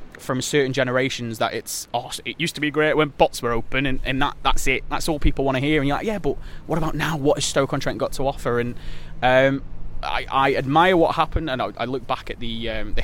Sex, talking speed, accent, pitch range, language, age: male, 260 wpm, British, 110-125 Hz, English, 20-39